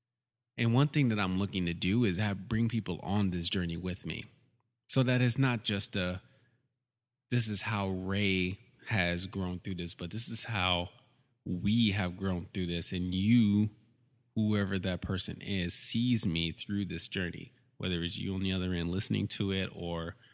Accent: American